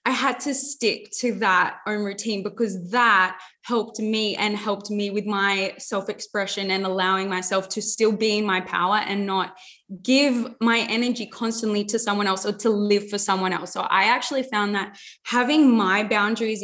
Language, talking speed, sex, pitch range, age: English, 180 wpm, female, 205-255 Hz, 20-39